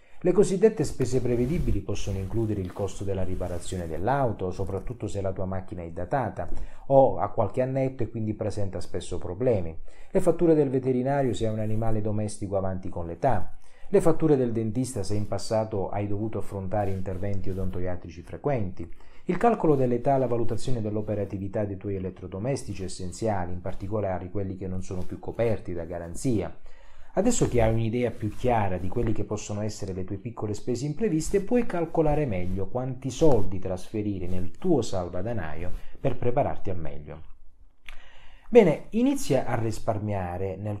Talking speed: 155 wpm